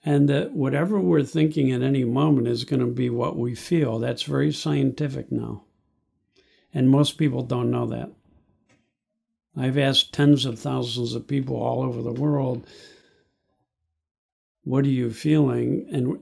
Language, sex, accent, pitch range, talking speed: English, male, American, 115-150 Hz, 150 wpm